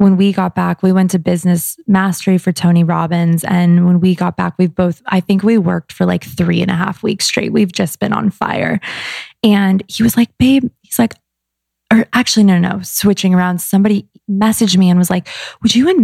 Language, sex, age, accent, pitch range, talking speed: English, female, 20-39, American, 175-220 Hz, 210 wpm